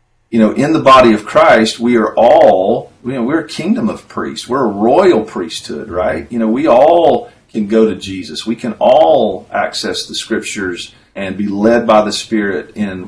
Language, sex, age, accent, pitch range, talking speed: English, male, 40-59, American, 105-120 Hz, 195 wpm